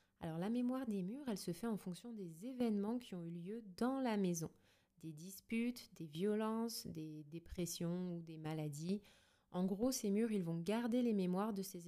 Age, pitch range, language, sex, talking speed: 20-39, 175-220 Hz, French, female, 195 wpm